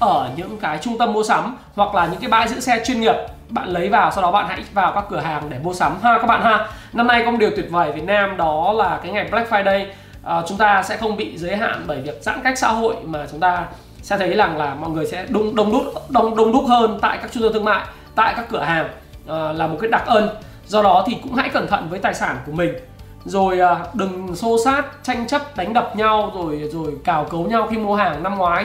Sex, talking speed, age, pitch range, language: male, 265 wpm, 20-39, 175-230 Hz, Vietnamese